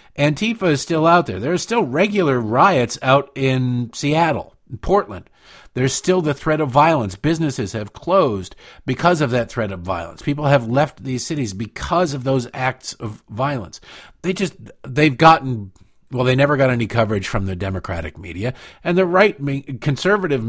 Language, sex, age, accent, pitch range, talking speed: English, male, 50-69, American, 110-145 Hz, 170 wpm